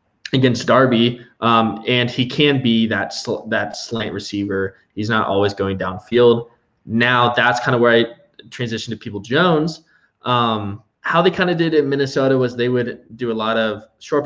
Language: English